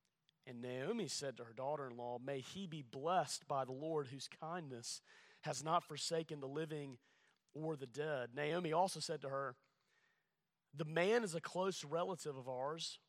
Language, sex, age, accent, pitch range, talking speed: English, male, 30-49, American, 135-175 Hz, 165 wpm